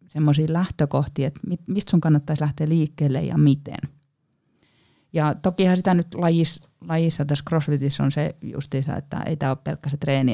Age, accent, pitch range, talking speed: 30-49, native, 145-170 Hz, 165 wpm